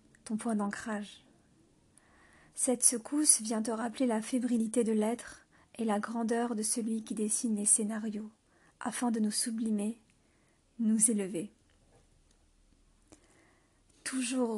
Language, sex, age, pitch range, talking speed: French, female, 40-59, 215-245 Hz, 115 wpm